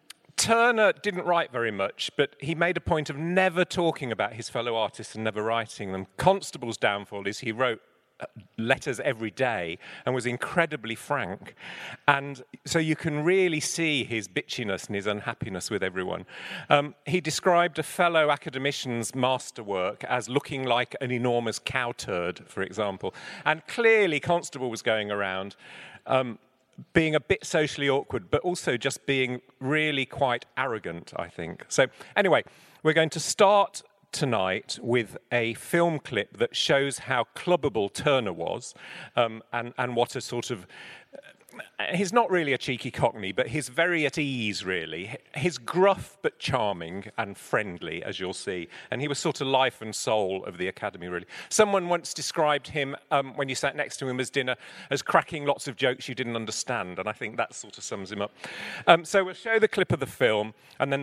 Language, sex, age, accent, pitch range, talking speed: English, male, 40-59, British, 115-160 Hz, 180 wpm